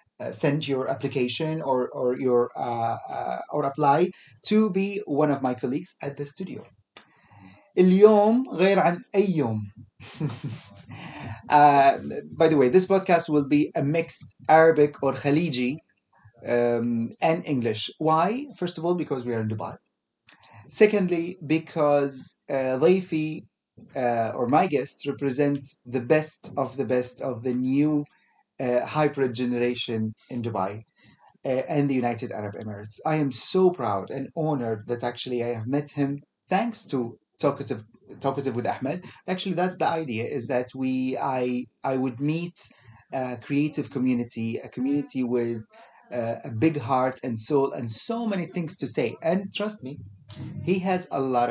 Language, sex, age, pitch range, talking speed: English, male, 30-49, 120-160 Hz, 150 wpm